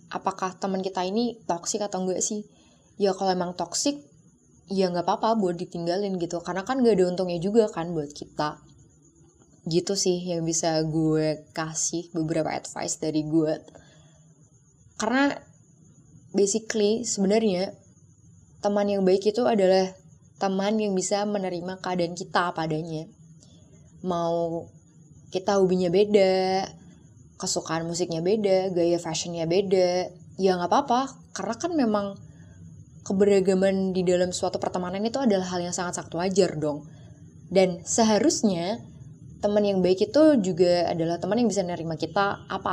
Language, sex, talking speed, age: Indonesian, female, 130 wpm, 20-39